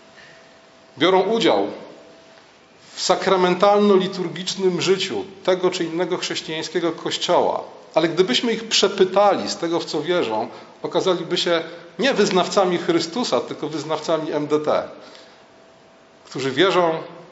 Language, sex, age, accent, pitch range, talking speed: Polish, male, 40-59, native, 145-185 Hz, 100 wpm